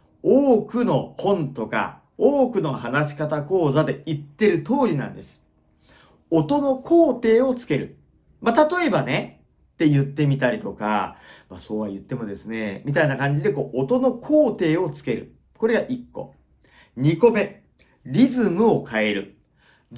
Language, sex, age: Japanese, male, 40-59